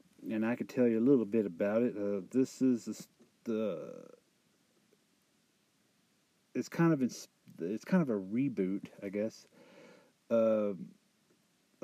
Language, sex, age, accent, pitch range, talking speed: English, male, 50-69, American, 110-165 Hz, 135 wpm